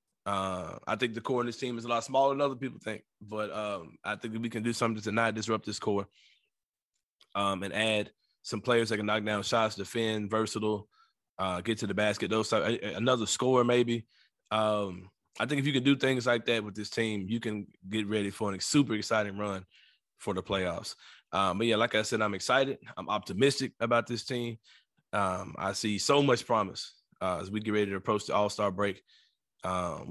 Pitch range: 100-115 Hz